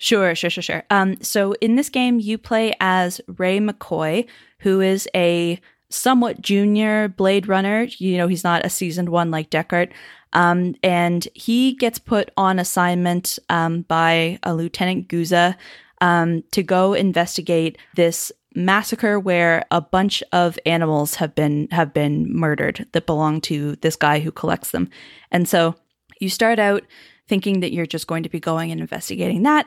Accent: American